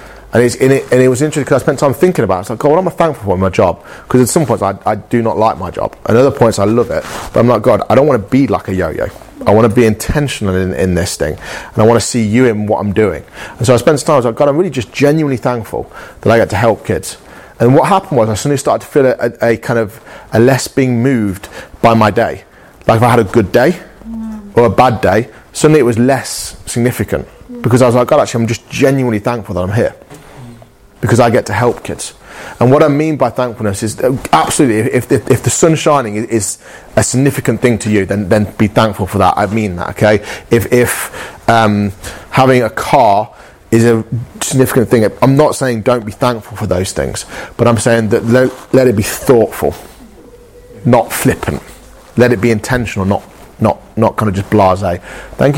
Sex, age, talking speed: male, 30-49, 240 wpm